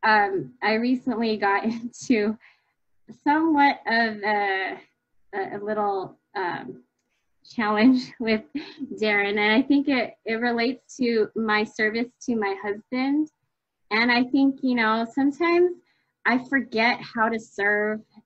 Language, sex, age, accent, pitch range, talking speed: English, female, 20-39, American, 210-260 Hz, 120 wpm